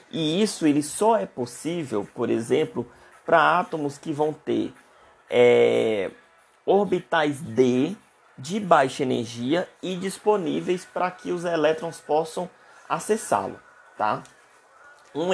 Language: Portuguese